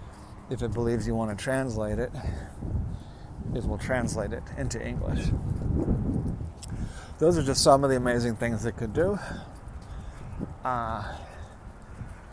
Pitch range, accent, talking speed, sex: 110-135 Hz, American, 125 wpm, male